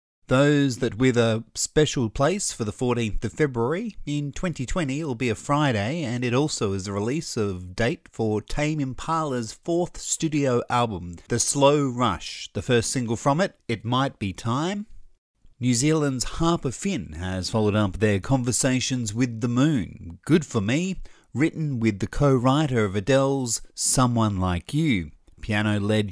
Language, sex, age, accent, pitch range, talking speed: English, male, 30-49, Australian, 105-140 Hz, 155 wpm